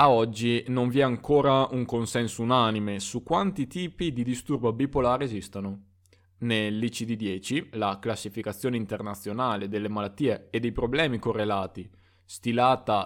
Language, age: Italian, 20-39